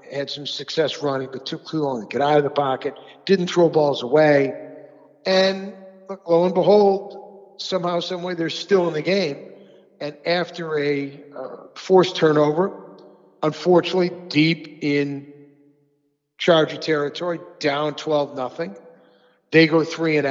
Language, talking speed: English, 140 wpm